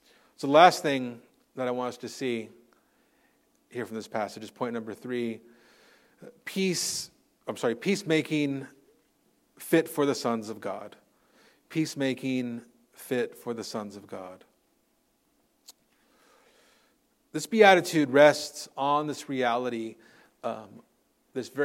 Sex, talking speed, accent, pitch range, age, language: male, 120 wpm, American, 120-155 Hz, 40-59, English